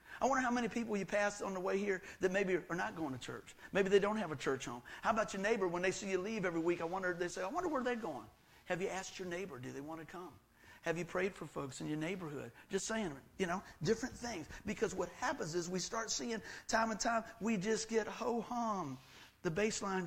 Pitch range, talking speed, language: 155-220 Hz, 255 wpm, English